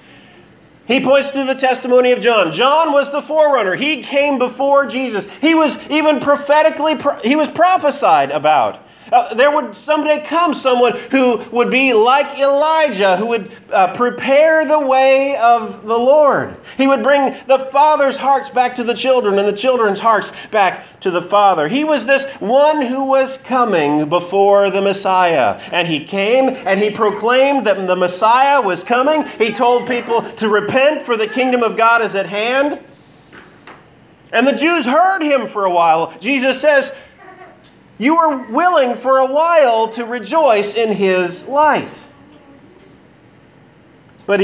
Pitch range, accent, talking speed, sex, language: 200-285 Hz, American, 160 wpm, male, English